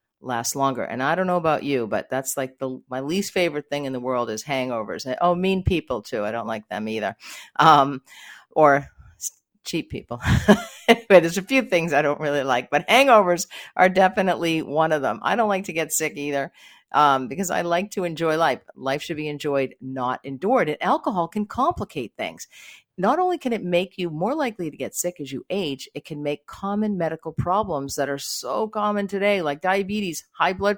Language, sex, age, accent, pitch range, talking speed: English, female, 50-69, American, 145-195 Hz, 205 wpm